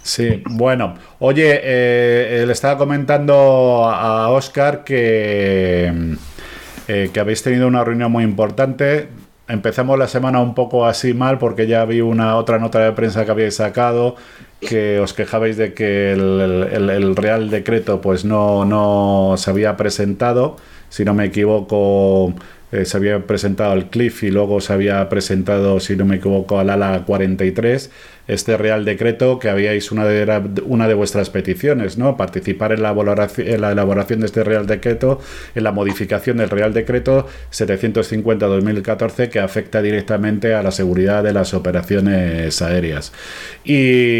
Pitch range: 100-120 Hz